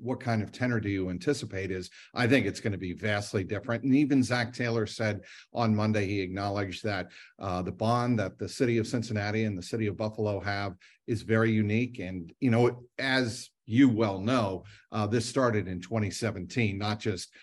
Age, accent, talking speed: 50-69, American, 195 wpm